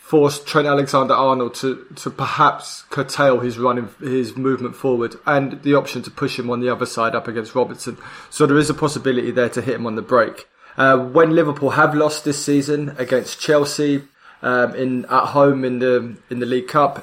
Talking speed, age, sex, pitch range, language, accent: 195 wpm, 20-39, male, 125-150 Hz, English, British